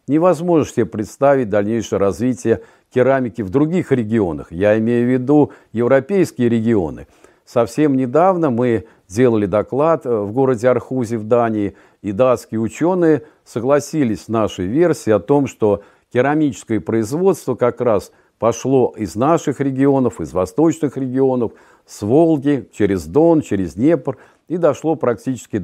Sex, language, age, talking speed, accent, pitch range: male, Russian, 50-69, 130 wpm, native, 105-145 Hz